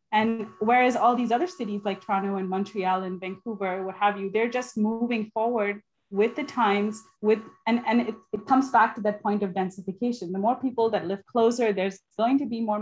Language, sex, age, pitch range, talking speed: English, female, 20-39, 185-225 Hz, 210 wpm